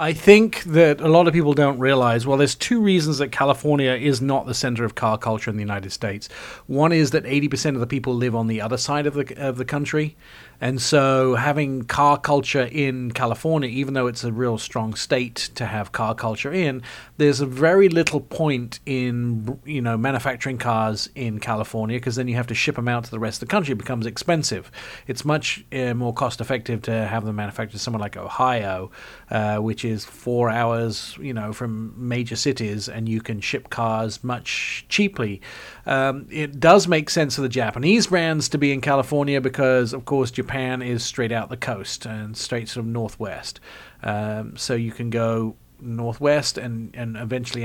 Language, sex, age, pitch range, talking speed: English, male, 40-59, 115-140 Hz, 200 wpm